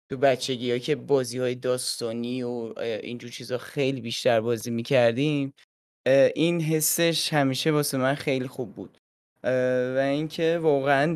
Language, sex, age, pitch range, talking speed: Persian, male, 20-39, 115-140 Hz, 130 wpm